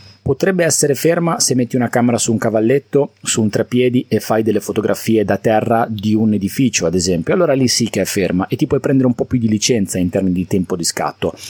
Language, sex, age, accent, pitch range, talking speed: Italian, male, 30-49, native, 105-140 Hz, 235 wpm